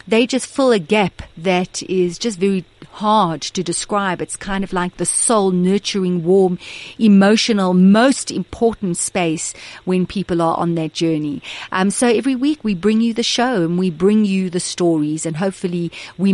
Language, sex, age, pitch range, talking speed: English, female, 40-59, 175-220 Hz, 175 wpm